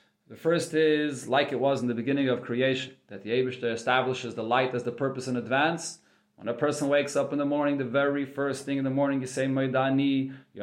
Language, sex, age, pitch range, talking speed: English, male, 40-59, 125-155 Hz, 225 wpm